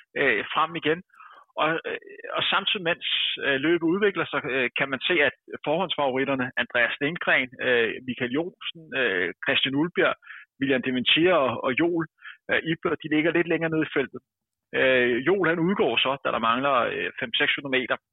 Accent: native